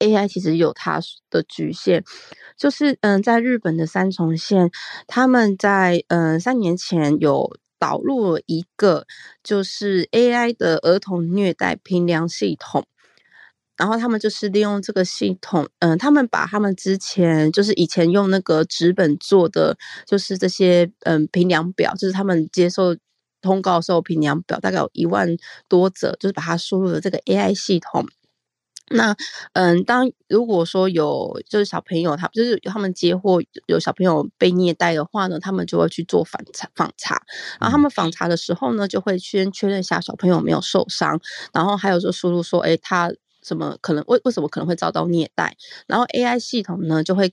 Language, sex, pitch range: Chinese, female, 170-205 Hz